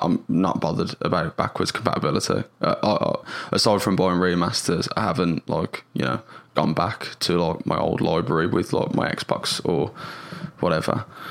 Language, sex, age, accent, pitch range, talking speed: English, male, 10-29, British, 95-125 Hz, 155 wpm